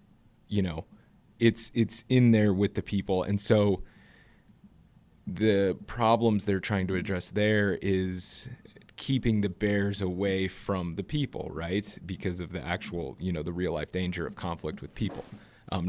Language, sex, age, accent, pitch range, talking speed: English, male, 30-49, American, 90-105 Hz, 155 wpm